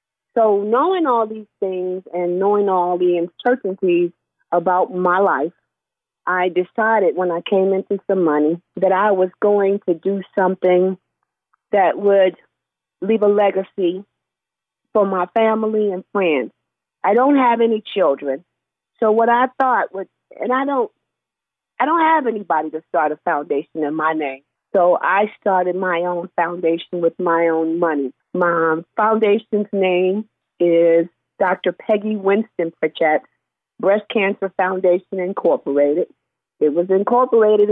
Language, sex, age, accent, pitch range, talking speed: English, female, 40-59, American, 170-210 Hz, 140 wpm